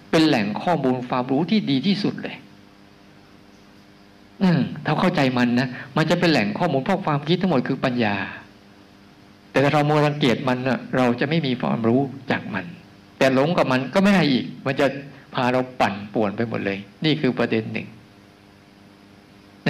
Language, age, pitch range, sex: Thai, 60-79, 100-145 Hz, male